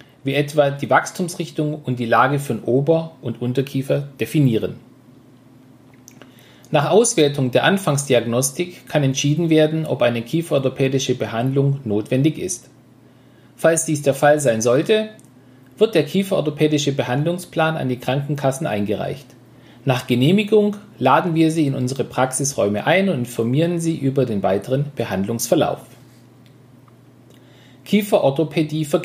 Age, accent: 40-59, German